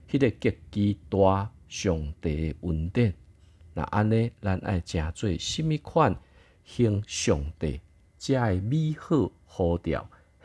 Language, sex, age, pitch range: Chinese, male, 50-69, 80-105 Hz